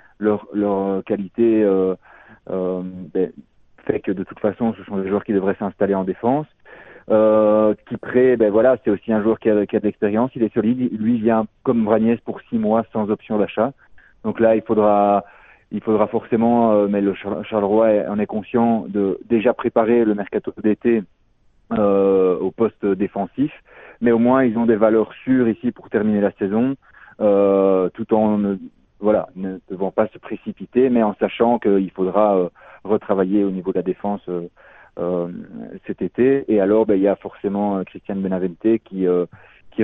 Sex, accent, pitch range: male, French, 95-110 Hz